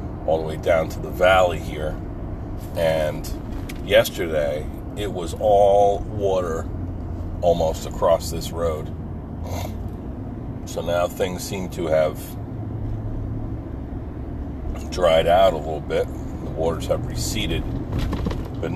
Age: 40-59